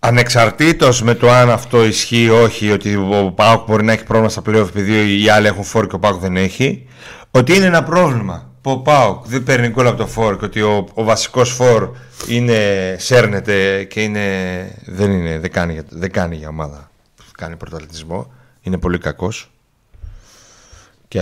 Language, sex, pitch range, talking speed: Greek, male, 95-125 Hz, 190 wpm